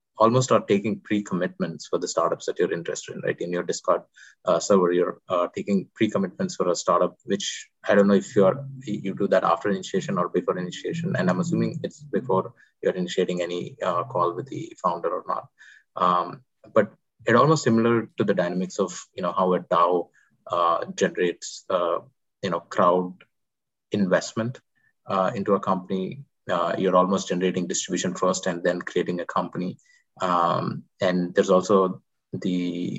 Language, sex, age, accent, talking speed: English, male, 20-39, Indian, 175 wpm